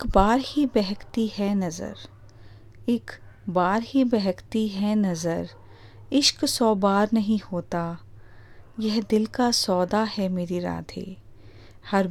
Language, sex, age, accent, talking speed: Hindi, female, 30-49, native, 125 wpm